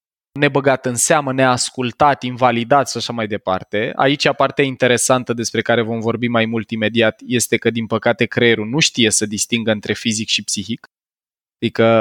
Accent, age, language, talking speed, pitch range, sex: native, 20-39, Romanian, 165 wpm, 115-155 Hz, male